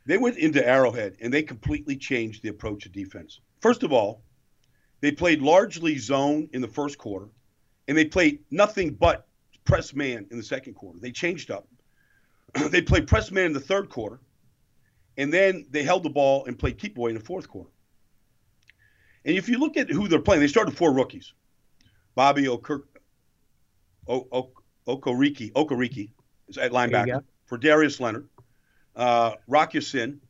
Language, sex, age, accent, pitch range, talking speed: English, male, 50-69, American, 120-160 Hz, 160 wpm